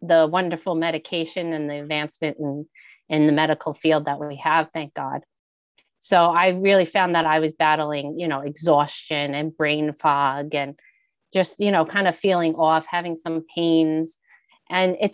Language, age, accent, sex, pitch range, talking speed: English, 40-59, American, female, 150-180 Hz, 170 wpm